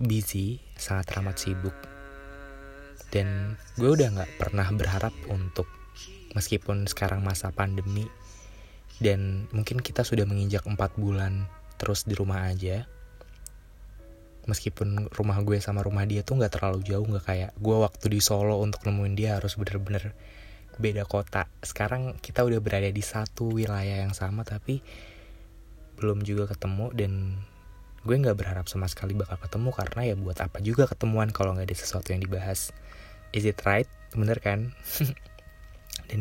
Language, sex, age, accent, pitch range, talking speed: Indonesian, male, 20-39, native, 95-110 Hz, 145 wpm